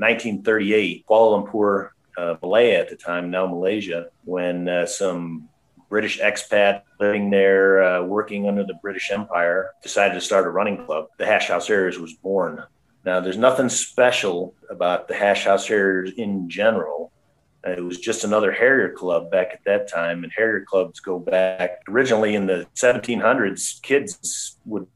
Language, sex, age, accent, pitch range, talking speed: English, male, 40-59, American, 90-105 Hz, 165 wpm